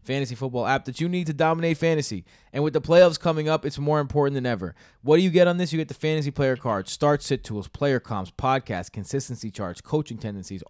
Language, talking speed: English, 235 wpm